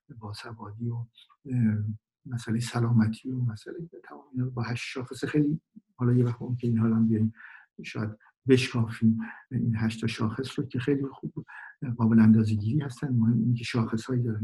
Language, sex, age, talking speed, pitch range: Persian, male, 50-69, 155 wpm, 110-130 Hz